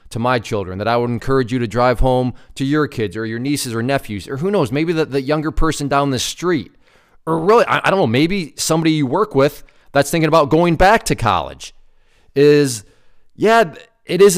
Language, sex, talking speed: English, male, 215 wpm